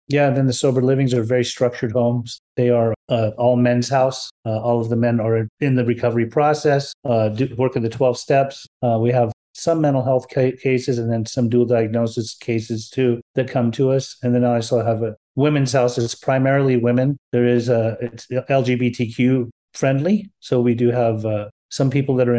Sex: male